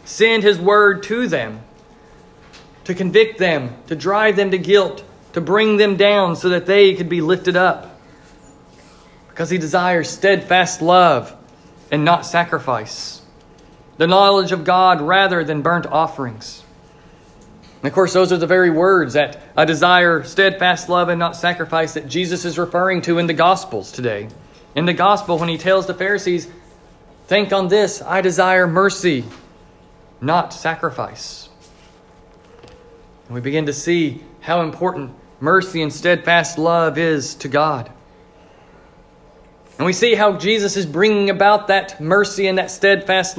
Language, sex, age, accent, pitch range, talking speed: English, male, 40-59, American, 165-195 Hz, 150 wpm